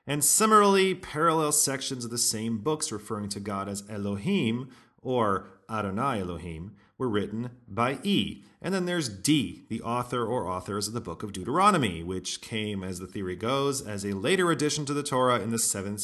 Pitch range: 100-140 Hz